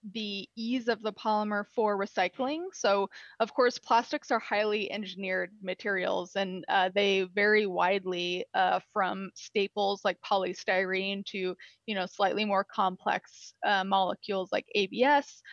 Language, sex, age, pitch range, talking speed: English, female, 20-39, 195-225 Hz, 135 wpm